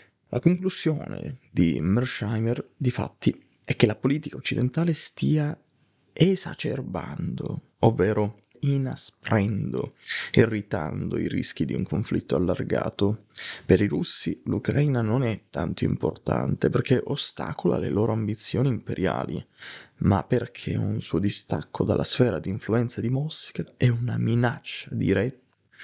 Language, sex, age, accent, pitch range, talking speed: Italian, male, 30-49, native, 105-135 Hz, 120 wpm